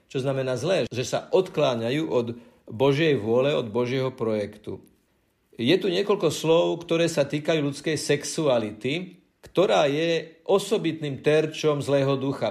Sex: male